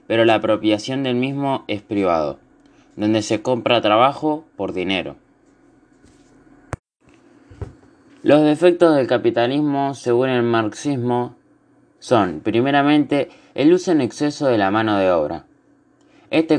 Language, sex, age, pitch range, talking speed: Spanish, male, 20-39, 110-140 Hz, 115 wpm